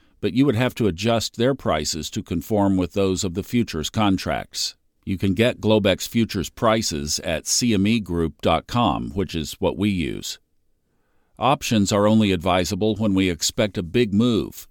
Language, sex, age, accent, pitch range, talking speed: English, male, 50-69, American, 90-110 Hz, 160 wpm